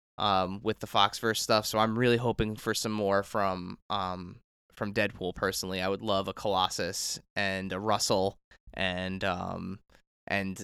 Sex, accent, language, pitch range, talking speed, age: male, American, English, 100-125 Hz, 160 wpm, 20-39